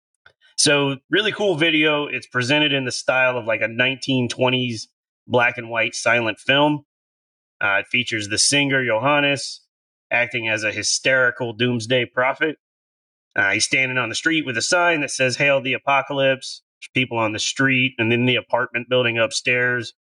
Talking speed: 160 wpm